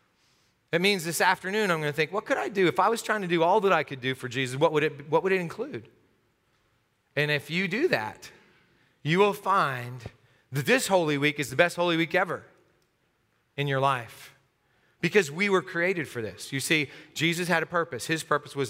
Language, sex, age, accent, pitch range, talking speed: English, male, 30-49, American, 130-170 Hz, 210 wpm